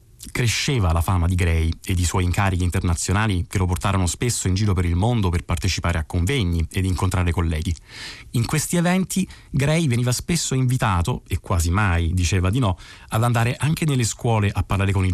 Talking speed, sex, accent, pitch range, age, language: 190 wpm, male, native, 95-125 Hz, 30-49, Italian